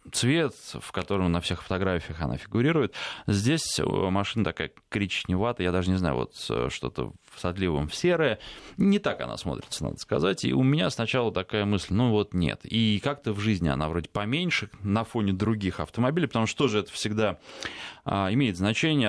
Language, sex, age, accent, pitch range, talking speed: Russian, male, 20-39, native, 90-120 Hz, 170 wpm